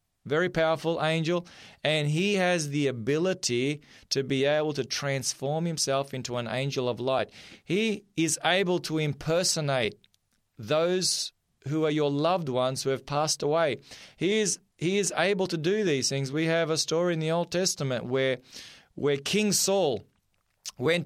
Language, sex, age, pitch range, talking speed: English, male, 20-39, 140-175 Hz, 155 wpm